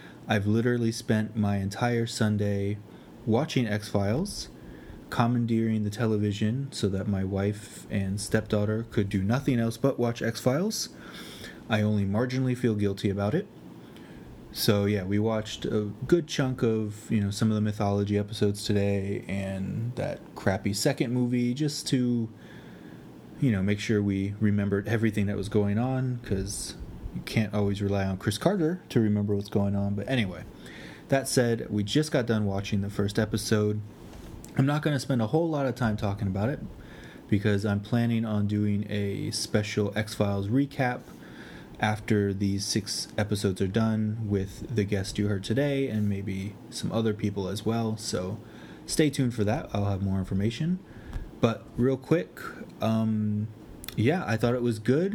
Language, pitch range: English, 100-120 Hz